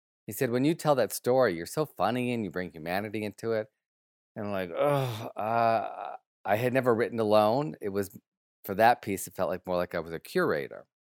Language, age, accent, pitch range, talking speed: English, 40-59, American, 90-125 Hz, 215 wpm